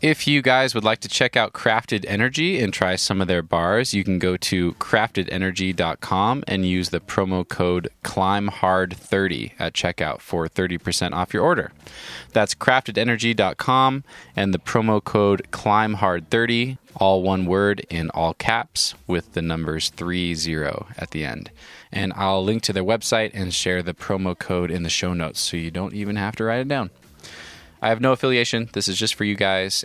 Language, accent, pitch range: English, American, 85-105 Hz